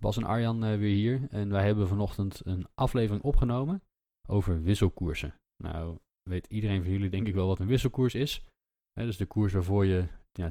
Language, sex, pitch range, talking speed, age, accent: Dutch, male, 90-110 Hz, 200 wpm, 20-39, Dutch